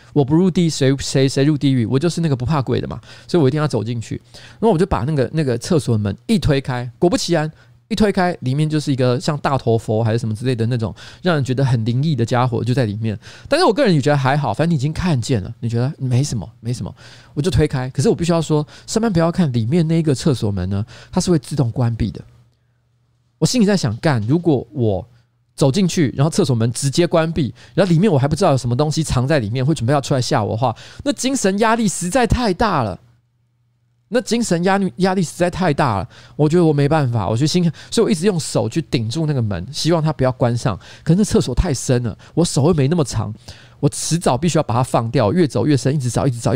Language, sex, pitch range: Chinese, male, 120-165 Hz